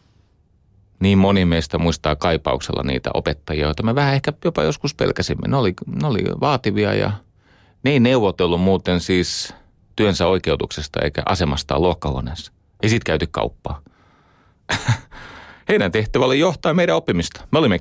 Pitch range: 85-110 Hz